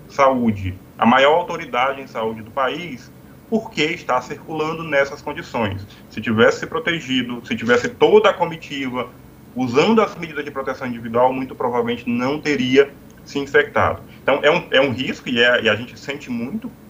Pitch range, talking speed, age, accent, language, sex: 115-160 Hz, 165 wpm, 20-39, Brazilian, Portuguese, male